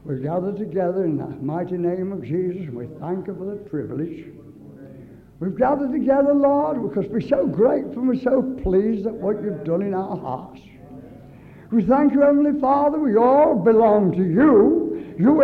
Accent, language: American, English